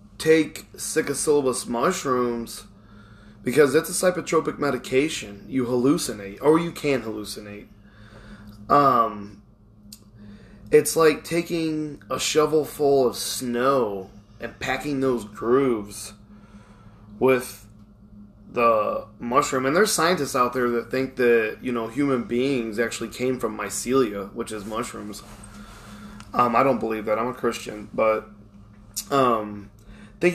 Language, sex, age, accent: English, male, 20-39, American